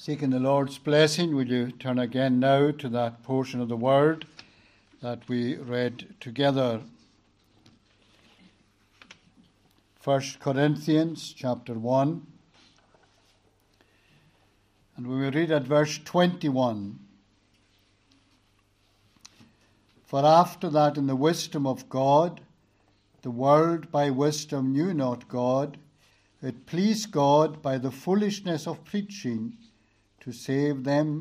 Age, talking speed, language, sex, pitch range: 60-79, 110 wpm, English, male, 110-145 Hz